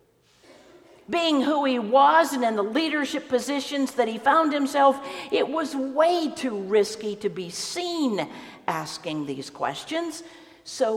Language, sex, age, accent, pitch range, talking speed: English, female, 50-69, American, 205-295 Hz, 135 wpm